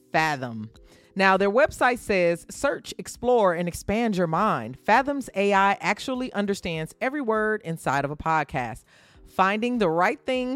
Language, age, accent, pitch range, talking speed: English, 30-49, American, 160-245 Hz, 140 wpm